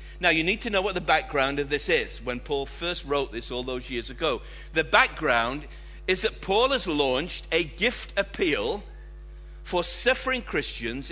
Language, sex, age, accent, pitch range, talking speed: English, male, 60-79, British, 140-205 Hz, 180 wpm